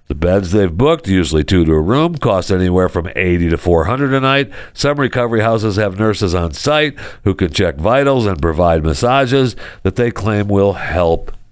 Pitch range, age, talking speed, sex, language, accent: 95-135 Hz, 60-79, 190 wpm, male, English, American